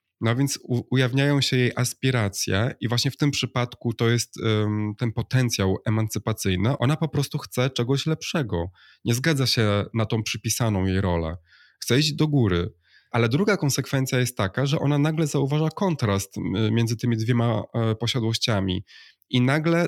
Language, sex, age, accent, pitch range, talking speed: Polish, male, 20-39, native, 115-140 Hz, 150 wpm